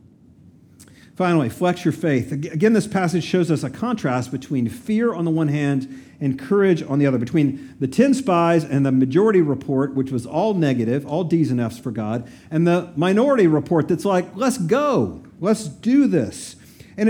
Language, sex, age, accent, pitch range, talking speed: English, male, 50-69, American, 135-185 Hz, 185 wpm